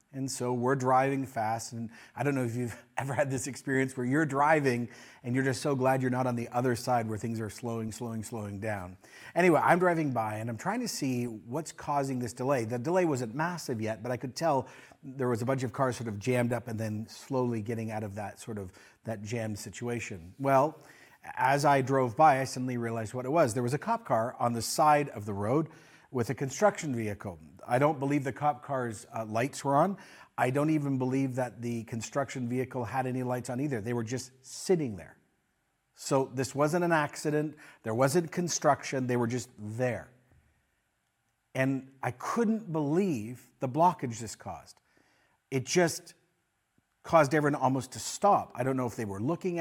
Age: 40-59